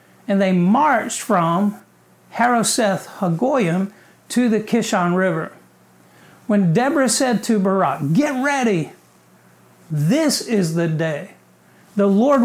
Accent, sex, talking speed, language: American, male, 110 wpm, English